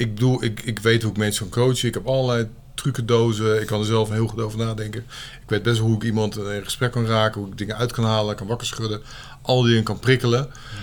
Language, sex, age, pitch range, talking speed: Dutch, male, 50-69, 105-125 Hz, 265 wpm